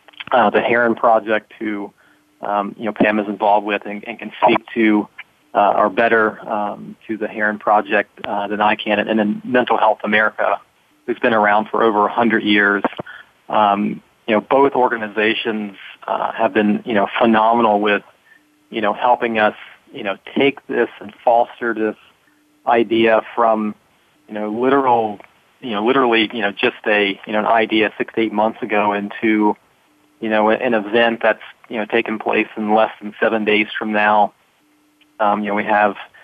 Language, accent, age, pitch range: English, American, 30-49, 105-115 Hz